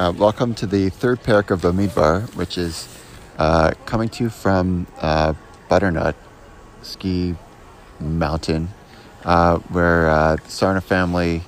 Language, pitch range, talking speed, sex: English, 80-95 Hz, 135 wpm, male